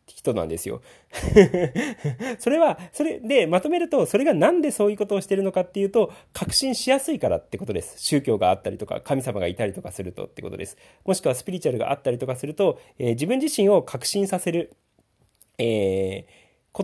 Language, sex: Japanese, male